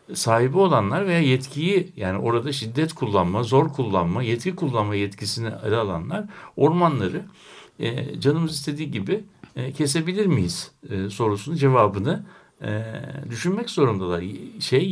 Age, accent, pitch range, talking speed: 60-79, native, 115-165 Hz, 120 wpm